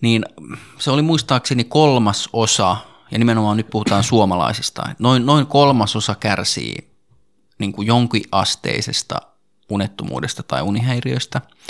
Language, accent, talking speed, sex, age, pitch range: Finnish, native, 120 wpm, male, 20-39, 100-125 Hz